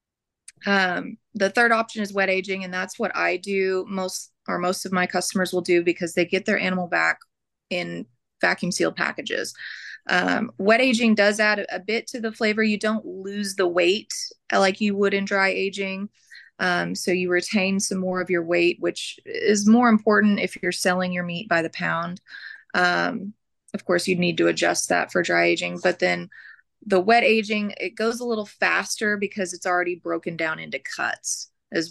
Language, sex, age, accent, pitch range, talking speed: English, female, 20-39, American, 180-205 Hz, 190 wpm